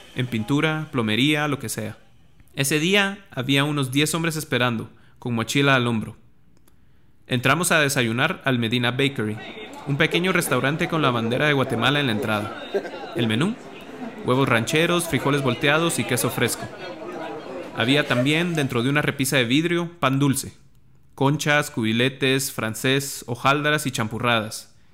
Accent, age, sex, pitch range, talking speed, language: Mexican, 30-49, male, 120-150 Hz, 140 wpm, Spanish